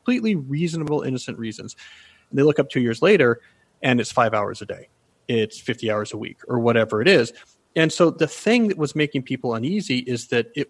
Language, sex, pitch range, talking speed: English, male, 120-150 Hz, 215 wpm